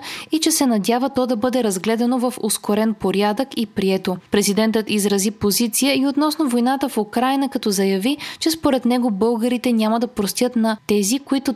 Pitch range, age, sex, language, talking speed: 200-260 Hz, 20-39, female, Bulgarian, 170 wpm